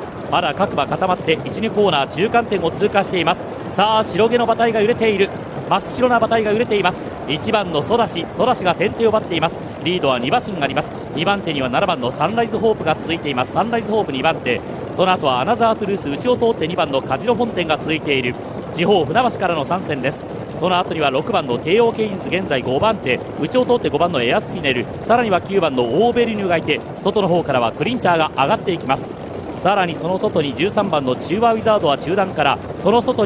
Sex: male